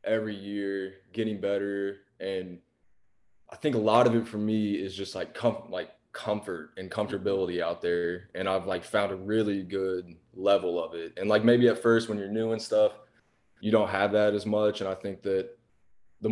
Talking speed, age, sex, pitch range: 200 wpm, 20-39, male, 95-110 Hz